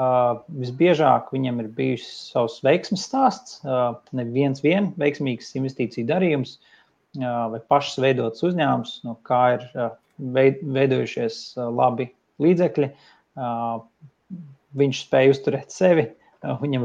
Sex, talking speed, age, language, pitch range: male, 100 wpm, 30-49, English, 120-140 Hz